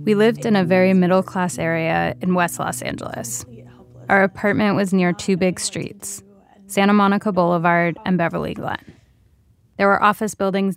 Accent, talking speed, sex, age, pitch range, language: American, 155 wpm, female, 20-39, 170-195 Hz, English